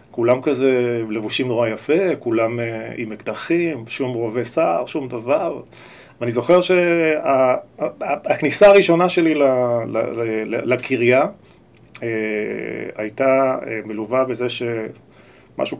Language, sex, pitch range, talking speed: Hebrew, male, 115-135 Hz, 95 wpm